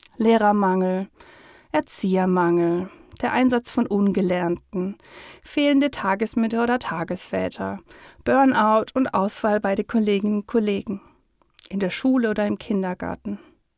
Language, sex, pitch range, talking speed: German, female, 195-235 Hz, 105 wpm